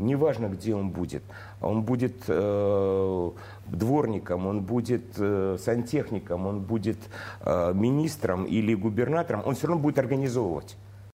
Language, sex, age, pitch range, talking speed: Russian, male, 50-69, 95-120 Hz, 125 wpm